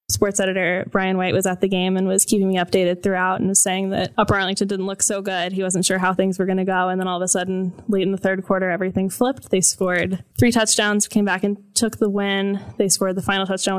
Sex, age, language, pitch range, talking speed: female, 10-29, English, 185-200 Hz, 265 wpm